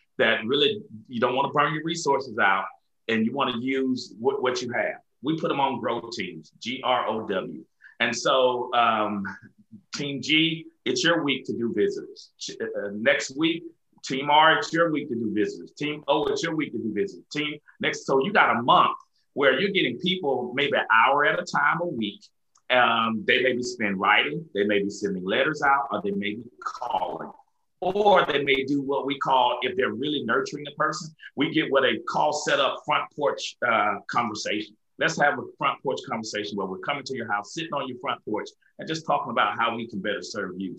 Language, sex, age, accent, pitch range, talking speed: English, male, 40-59, American, 110-165 Hz, 210 wpm